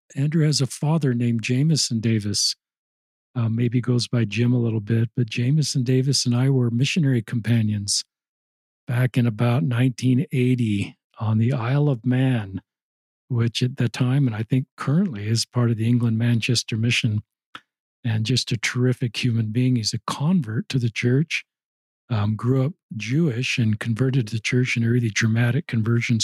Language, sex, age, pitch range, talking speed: English, male, 50-69, 115-135 Hz, 165 wpm